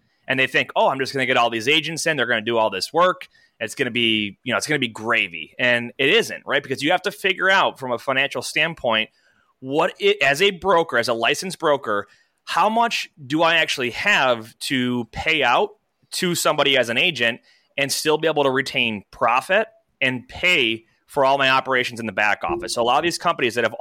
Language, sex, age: English, male, 30-49